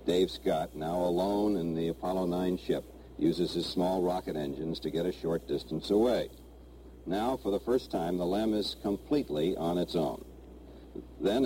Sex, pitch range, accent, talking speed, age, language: male, 85-105 Hz, American, 175 wpm, 60-79, English